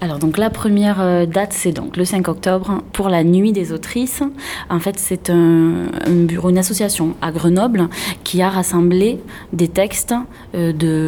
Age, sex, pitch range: 20-39, female, 165-190 Hz